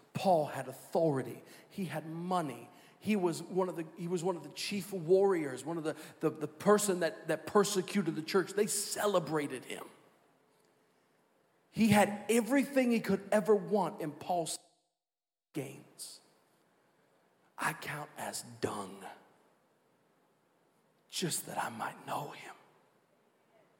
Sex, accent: male, American